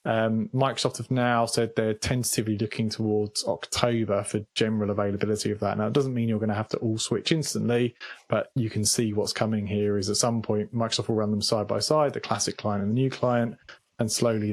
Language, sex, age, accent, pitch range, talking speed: English, male, 20-39, British, 105-115 Hz, 225 wpm